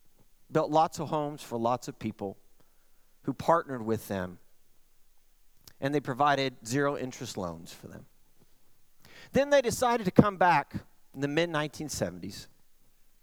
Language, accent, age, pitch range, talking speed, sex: English, American, 50-69, 125-185 Hz, 125 wpm, male